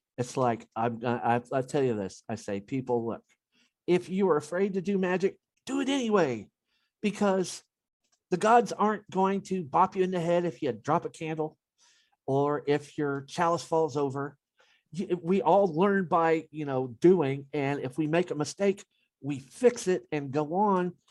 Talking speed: 180 wpm